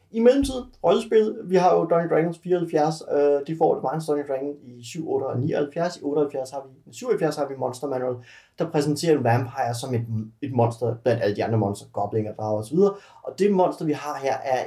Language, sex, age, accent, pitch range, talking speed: Danish, male, 30-49, native, 125-165 Hz, 215 wpm